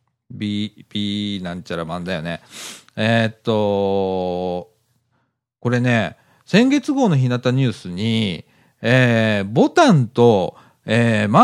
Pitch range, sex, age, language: 105-170 Hz, male, 40-59, Japanese